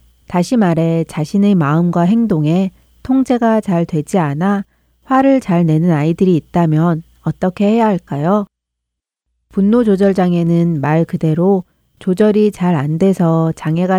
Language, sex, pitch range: Korean, female, 160-205 Hz